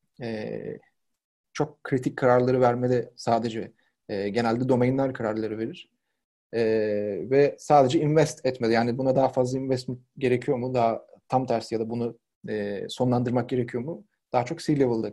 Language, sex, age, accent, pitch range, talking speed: Turkish, male, 30-49, native, 120-145 Hz, 145 wpm